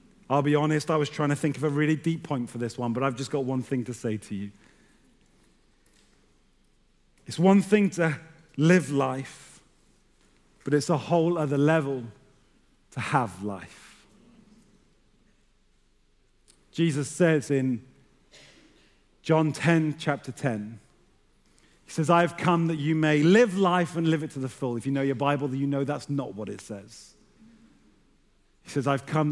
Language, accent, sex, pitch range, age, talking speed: English, British, male, 130-175 Hz, 30-49, 165 wpm